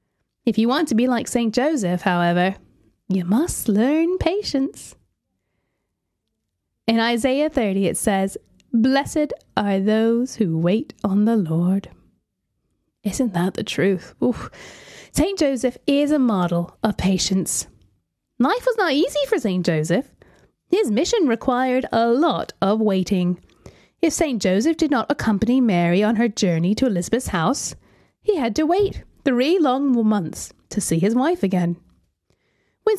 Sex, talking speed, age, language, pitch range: female, 140 wpm, 10-29, English, 195-285 Hz